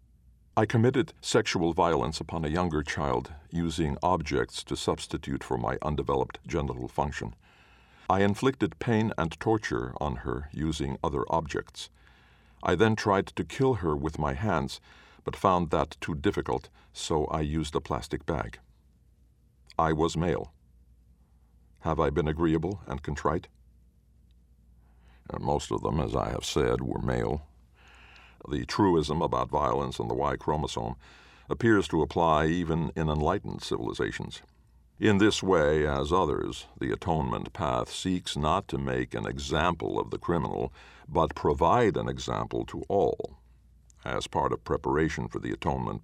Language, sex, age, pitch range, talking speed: English, male, 50-69, 65-85 Hz, 140 wpm